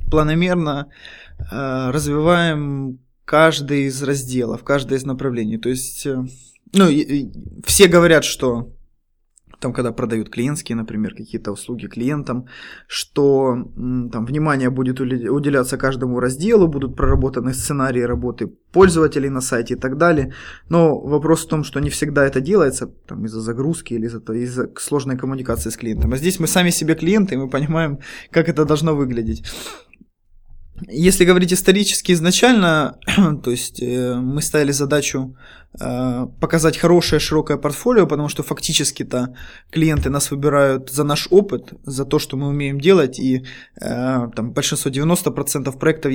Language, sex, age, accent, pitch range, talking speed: Russian, male, 20-39, native, 125-155 Hz, 140 wpm